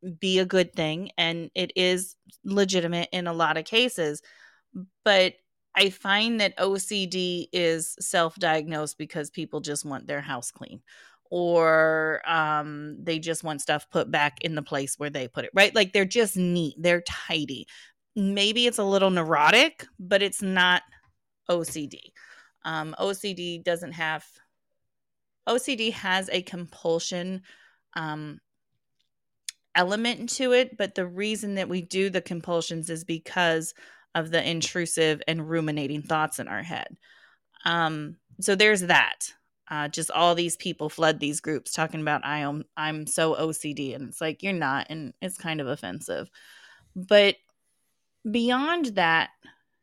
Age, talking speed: 30-49, 145 wpm